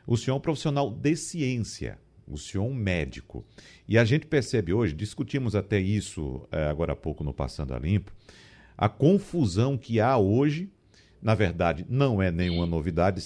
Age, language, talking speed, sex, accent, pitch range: 50-69, Portuguese, 170 wpm, male, Brazilian, 105-155 Hz